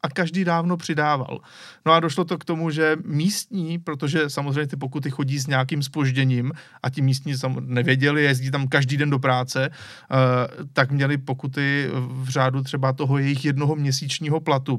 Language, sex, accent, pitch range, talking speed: Czech, male, native, 135-150 Hz, 170 wpm